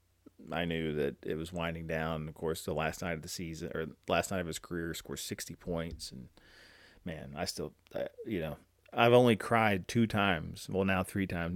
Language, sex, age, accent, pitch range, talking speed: English, male, 30-49, American, 85-100 Hz, 210 wpm